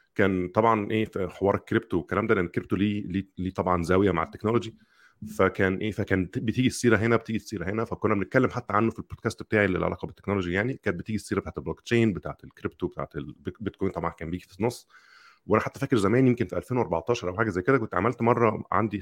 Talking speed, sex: 210 wpm, male